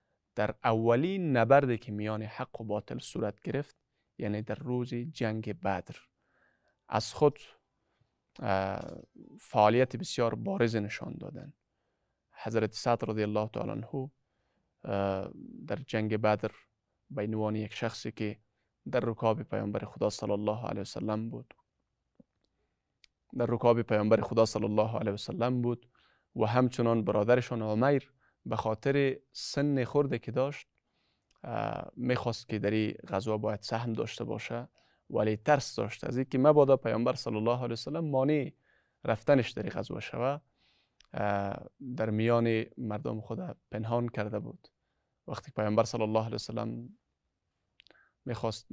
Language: English